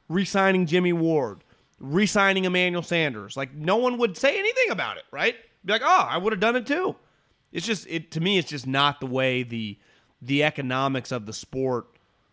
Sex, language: male, English